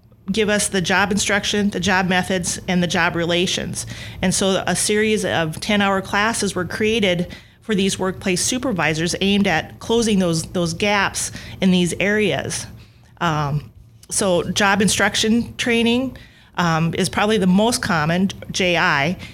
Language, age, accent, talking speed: English, 30-49, American, 145 wpm